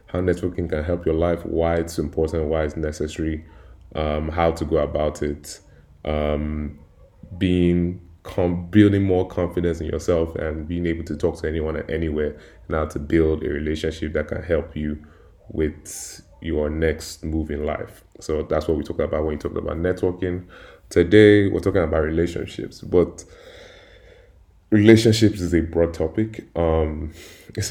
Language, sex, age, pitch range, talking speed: English, male, 20-39, 80-90 Hz, 160 wpm